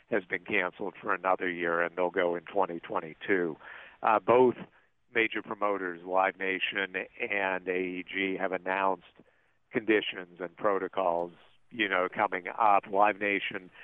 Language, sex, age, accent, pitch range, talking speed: English, male, 50-69, American, 90-105 Hz, 130 wpm